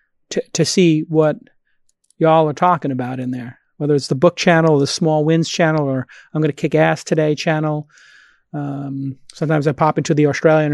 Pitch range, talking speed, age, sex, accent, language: 140-160 Hz, 195 wpm, 30-49, male, American, English